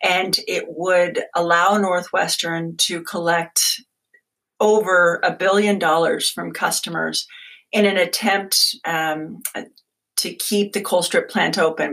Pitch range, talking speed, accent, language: 165-210 Hz, 120 wpm, American, English